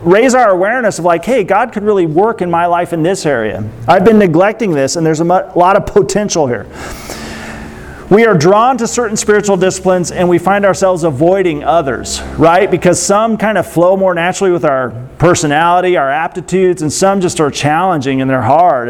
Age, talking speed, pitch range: 40-59, 195 wpm, 165-215 Hz